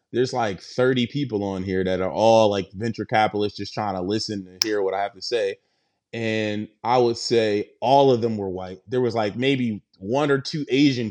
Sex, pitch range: male, 110-150 Hz